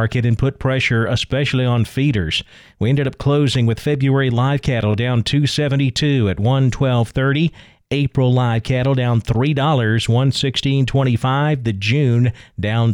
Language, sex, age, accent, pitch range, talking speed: English, male, 40-59, American, 115-145 Hz, 130 wpm